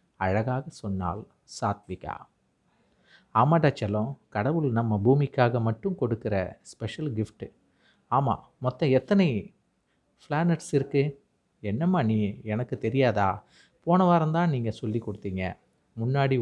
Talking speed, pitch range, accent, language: 100 wpm, 105-145 Hz, native, Tamil